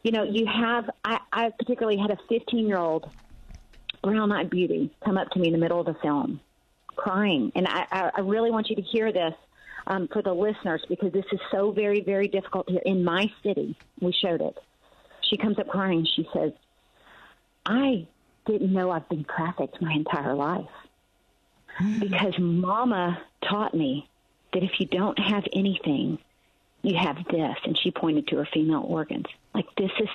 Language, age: English, 40-59